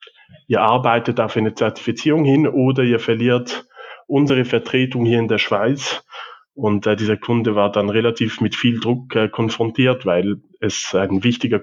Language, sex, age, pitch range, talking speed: German, male, 20-39, 110-130 Hz, 160 wpm